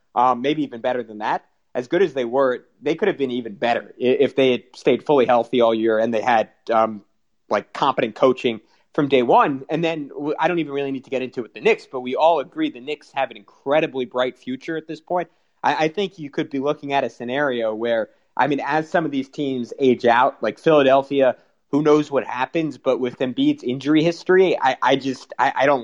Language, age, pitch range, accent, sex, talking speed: English, 30-49, 130-155 Hz, American, male, 230 wpm